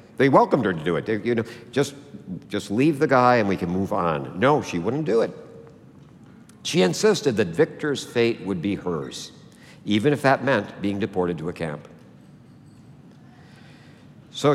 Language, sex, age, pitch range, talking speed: English, male, 60-79, 105-150 Hz, 170 wpm